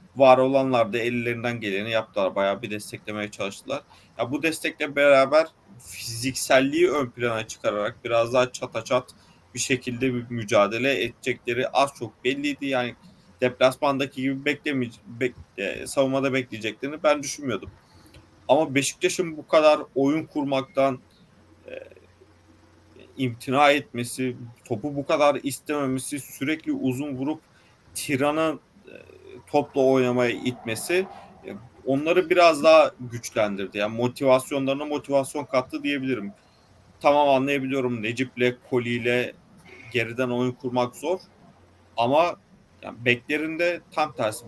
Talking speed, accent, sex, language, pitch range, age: 110 wpm, native, male, Turkish, 120-140 Hz, 40-59